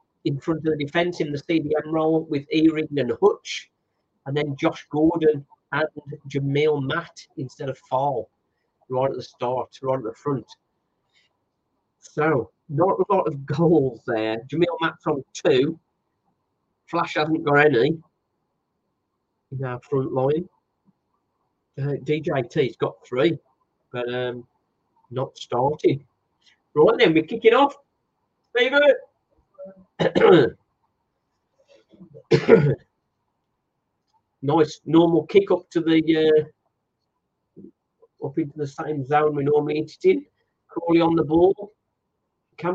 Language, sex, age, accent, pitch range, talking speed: English, male, 40-59, British, 145-175 Hz, 120 wpm